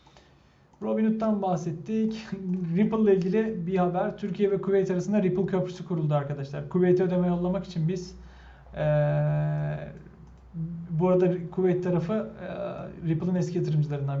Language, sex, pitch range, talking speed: Turkish, male, 150-185 Hz, 125 wpm